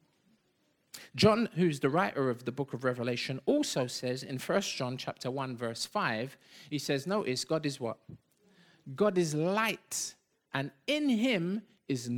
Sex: male